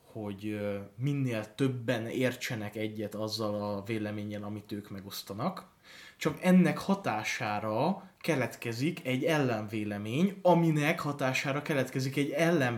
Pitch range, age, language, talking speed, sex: 110-160 Hz, 20-39, Hungarian, 100 wpm, male